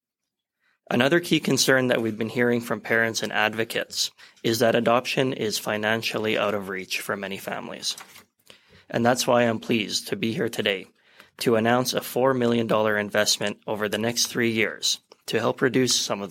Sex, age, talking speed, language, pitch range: male, 20-39, 175 wpm, English, 105-120 Hz